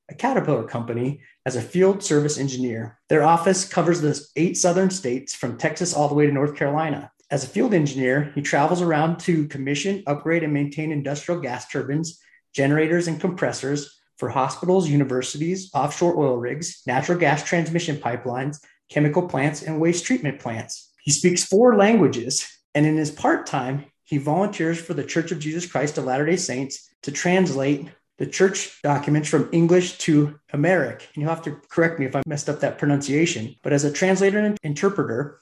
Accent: American